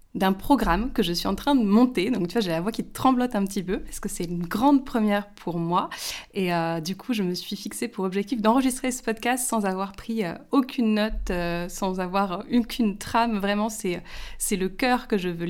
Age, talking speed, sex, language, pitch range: 20-39, 230 wpm, female, French, 175-225 Hz